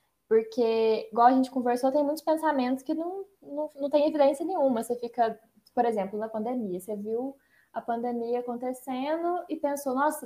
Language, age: Portuguese, 10-29